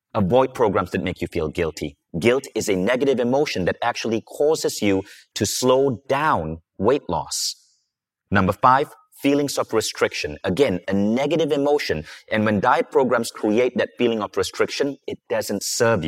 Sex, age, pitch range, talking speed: male, 30-49, 100-140 Hz, 155 wpm